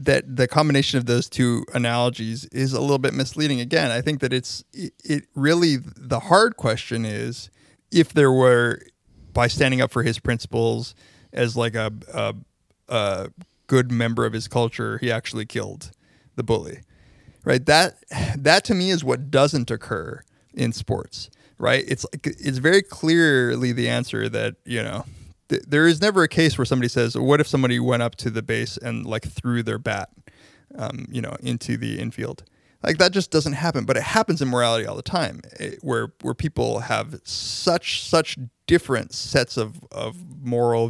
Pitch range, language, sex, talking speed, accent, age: 115-145 Hz, English, male, 180 wpm, American, 20-39